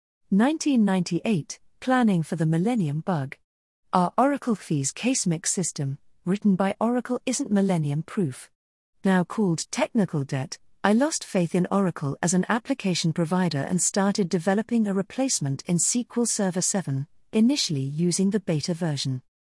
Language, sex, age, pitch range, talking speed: English, female, 40-59, 160-215 Hz, 140 wpm